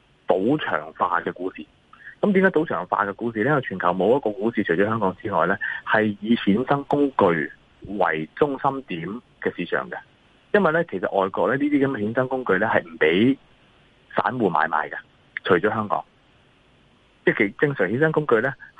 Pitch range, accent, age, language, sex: 95-135 Hz, native, 30-49, Chinese, male